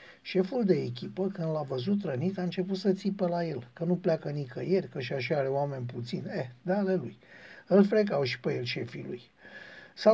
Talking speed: 200 wpm